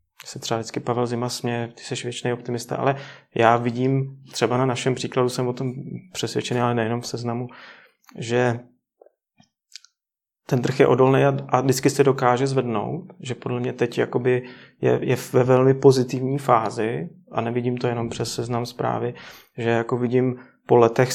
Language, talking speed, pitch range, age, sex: Czech, 165 wpm, 120-130 Hz, 30-49, male